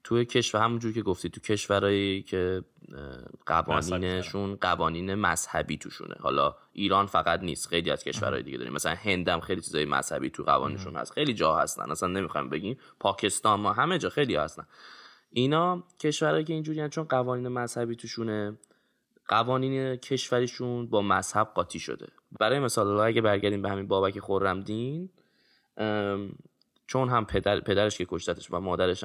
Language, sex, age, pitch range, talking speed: Persian, male, 10-29, 95-125 Hz, 150 wpm